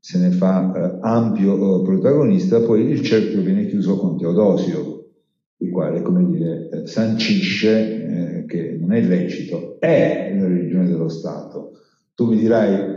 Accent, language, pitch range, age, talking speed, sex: native, Italian, 90-120 Hz, 50-69, 155 wpm, male